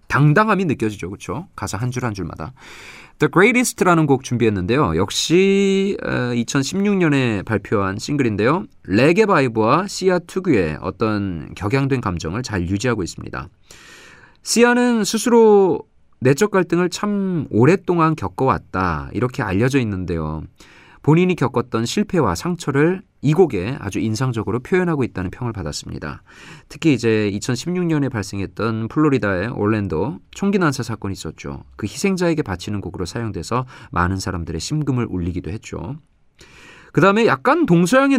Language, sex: Korean, male